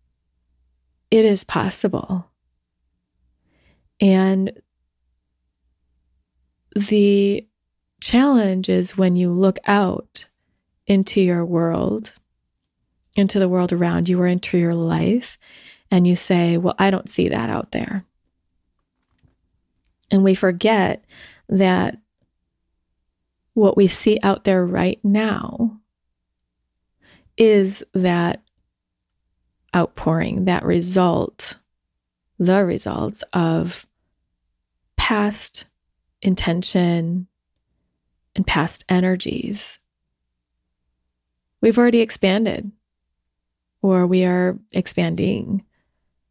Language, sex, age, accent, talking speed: English, female, 20-39, American, 85 wpm